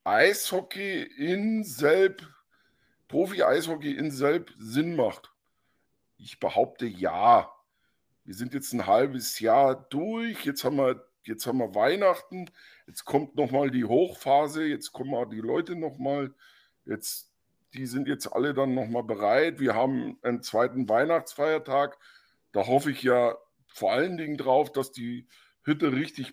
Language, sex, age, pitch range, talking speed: German, male, 50-69, 125-150 Hz, 150 wpm